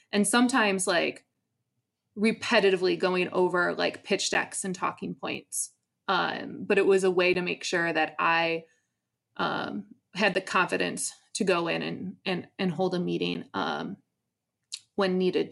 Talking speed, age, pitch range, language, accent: 150 wpm, 20-39, 175-195 Hz, English, American